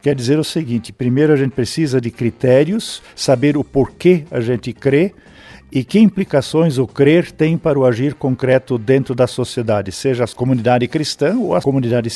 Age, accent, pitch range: 50-69, Brazilian, 125-155 Hz